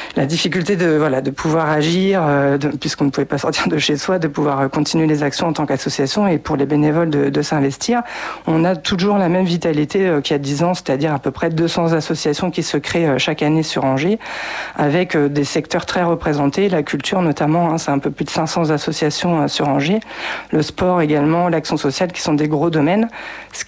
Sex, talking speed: female, 215 wpm